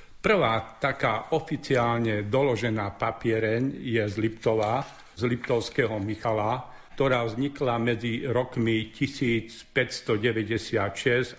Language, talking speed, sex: Slovak, 85 wpm, male